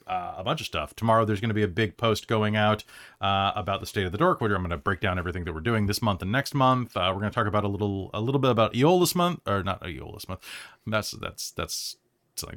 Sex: male